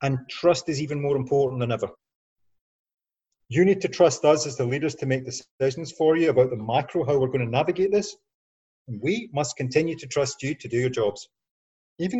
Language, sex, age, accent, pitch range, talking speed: English, male, 30-49, British, 135-220 Hz, 200 wpm